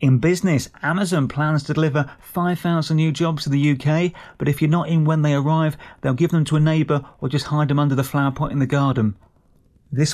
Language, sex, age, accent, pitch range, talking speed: English, male, 30-49, British, 130-160 Hz, 220 wpm